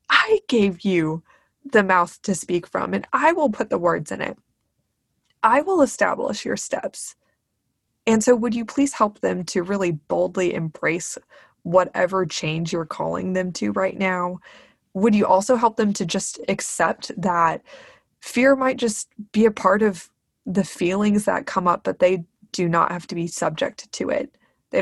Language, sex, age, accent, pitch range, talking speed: English, female, 20-39, American, 175-215 Hz, 175 wpm